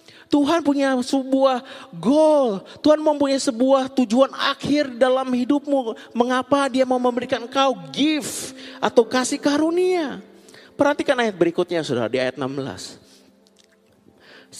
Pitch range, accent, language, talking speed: 170-270 Hz, native, Indonesian, 110 wpm